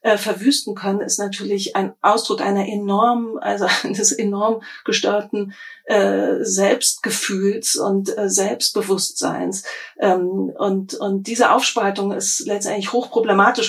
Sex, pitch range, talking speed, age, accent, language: female, 195-220 Hz, 115 wpm, 40-59, German, German